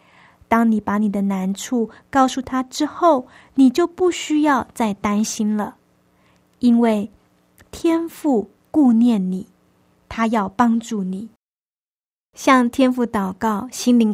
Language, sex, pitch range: Chinese, female, 195-245 Hz